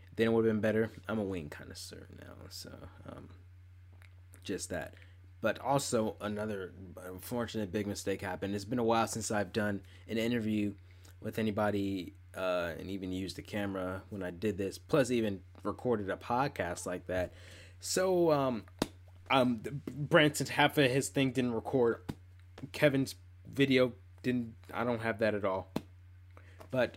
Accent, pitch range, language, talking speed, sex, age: American, 90-110 Hz, English, 160 wpm, male, 20-39